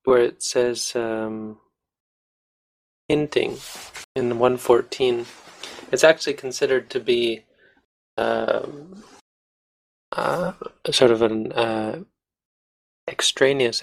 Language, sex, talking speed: English, male, 85 wpm